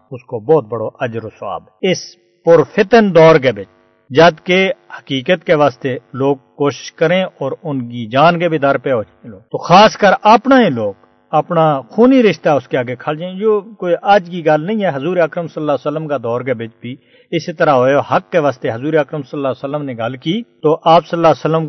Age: 50-69